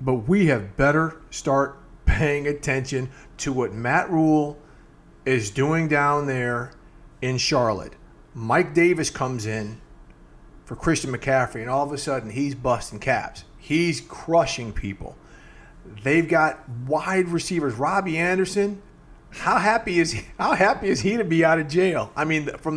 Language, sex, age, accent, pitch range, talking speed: English, male, 40-59, American, 125-165 Hz, 150 wpm